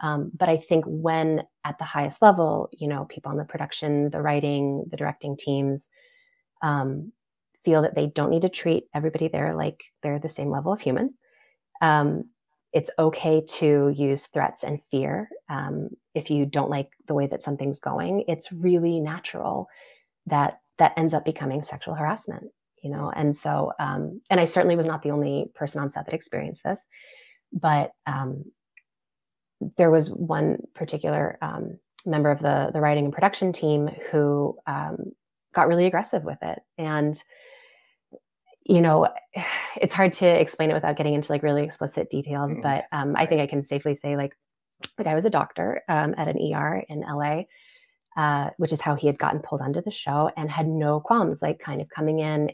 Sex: female